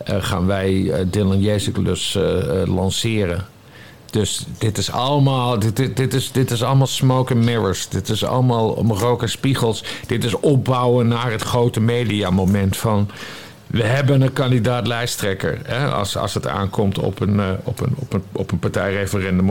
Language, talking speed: Dutch, 170 wpm